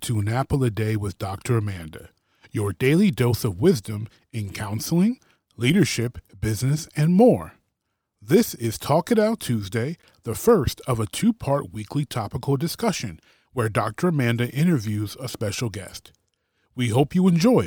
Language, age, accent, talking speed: English, 30-49, American, 150 wpm